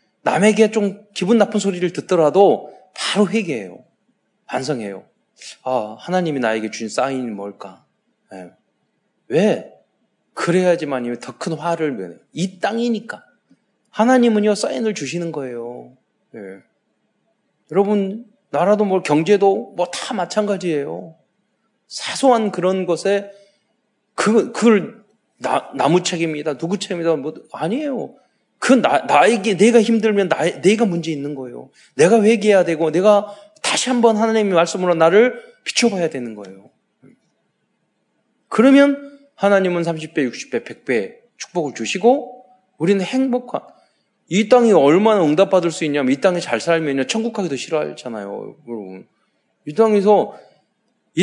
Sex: male